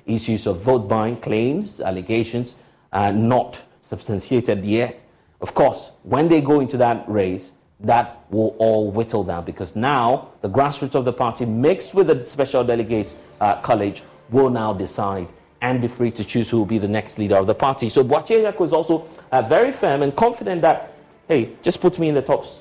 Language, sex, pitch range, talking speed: English, male, 105-145 Hz, 190 wpm